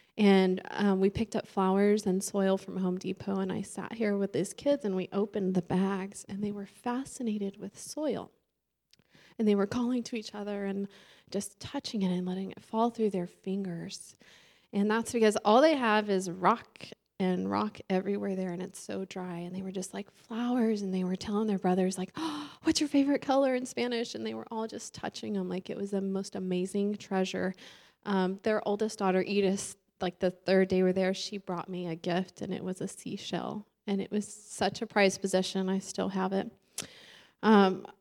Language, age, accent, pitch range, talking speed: English, 20-39, American, 185-210 Hz, 205 wpm